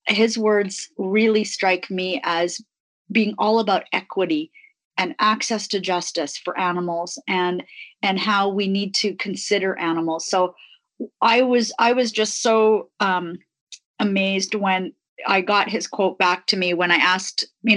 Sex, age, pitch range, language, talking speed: female, 30-49, 175-215 Hz, English, 150 wpm